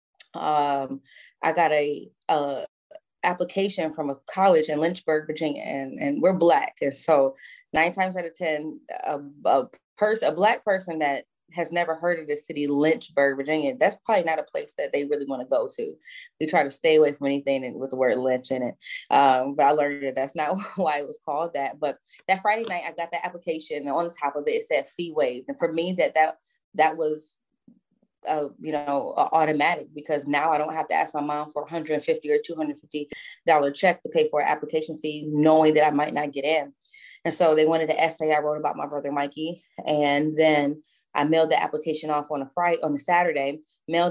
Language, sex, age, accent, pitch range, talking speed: English, female, 20-39, American, 145-175 Hz, 215 wpm